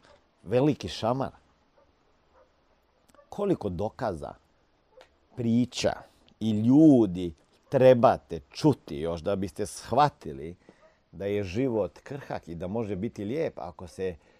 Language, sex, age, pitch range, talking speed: Croatian, male, 50-69, 95-130 Hz, 100 wpm